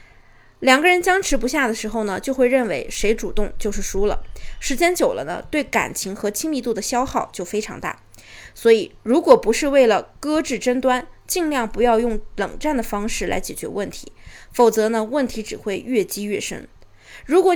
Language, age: Chinese, 20-39